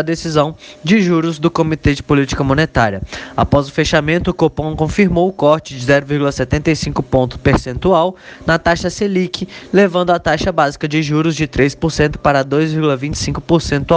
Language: Portuguese